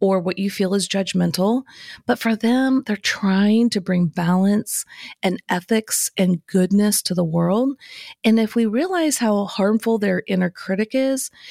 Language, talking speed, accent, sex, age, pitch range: English, 160 wpm, American, female, 40-59, 185-235 Hz